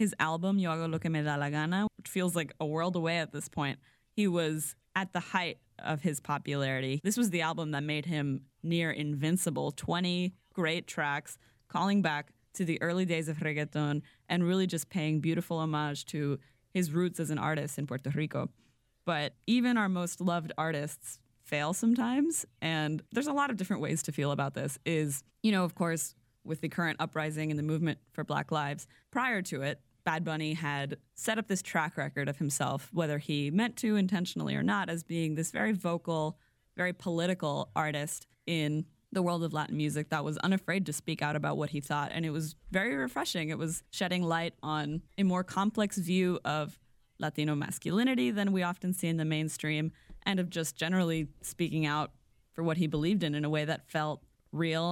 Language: English